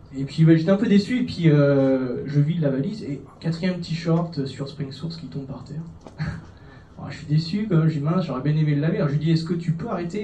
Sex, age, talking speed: male, 30-49, 270 wpm